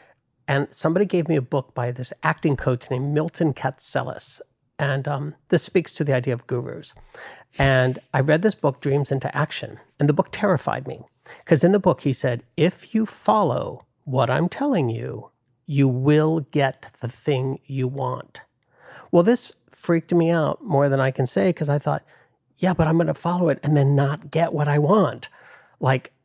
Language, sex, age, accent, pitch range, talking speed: English, male, 50-69, American, 135-165 Hz, 190 wpm